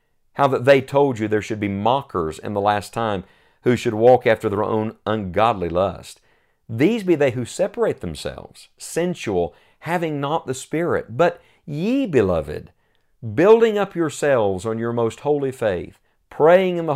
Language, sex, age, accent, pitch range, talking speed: English, male, 50-69, American, 105-150 Hz, 165 wpm